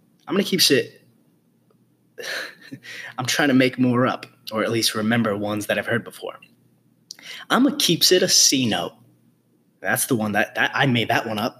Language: English